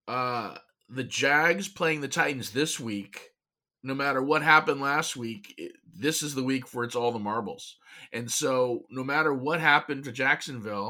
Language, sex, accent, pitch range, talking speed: English, male, American, 115-135 Hz, 175 wpm